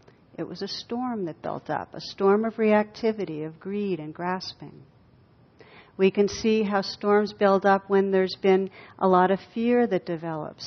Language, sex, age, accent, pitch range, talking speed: English, female, 60-79, American, 180-205 Hz, 175 wpm